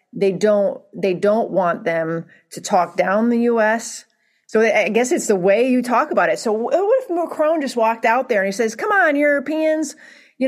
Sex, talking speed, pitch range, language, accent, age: female, 205 wpm, 180-240 Hz, English, American, 40-59